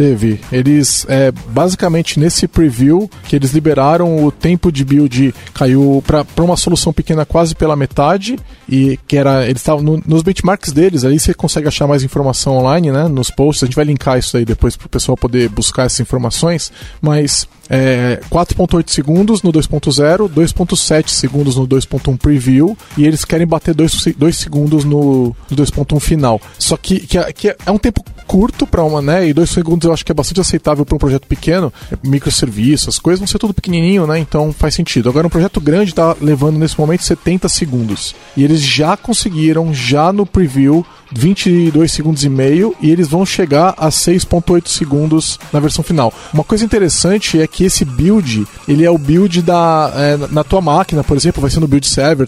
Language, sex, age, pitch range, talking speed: Portuguese, male, 20-39, 140-170 Hz, 190 wpm